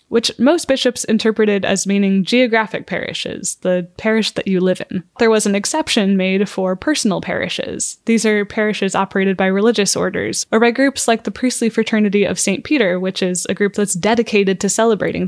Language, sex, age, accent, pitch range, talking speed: English, female, 10-29, American, 190-230 Hz, 185 wpm